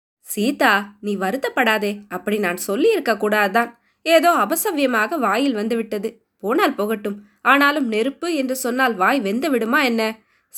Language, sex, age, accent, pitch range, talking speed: Tamil, female, 20-39, native, 220-275 Hz, 115 wpm